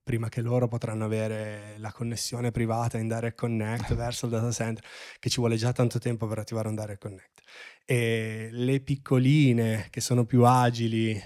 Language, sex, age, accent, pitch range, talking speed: Italian, male, 20-39, native, 110-125 Hz, 175 wpm